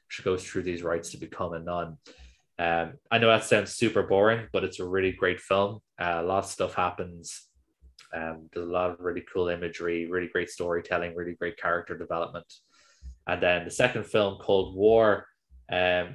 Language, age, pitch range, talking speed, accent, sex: English, 20-39, 85-95 Hz, 190 wpm, Irish, male